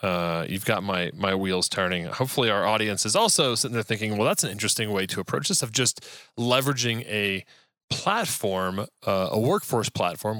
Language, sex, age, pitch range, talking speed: English, male, 30-49, 95-125 Hz, 185 wpm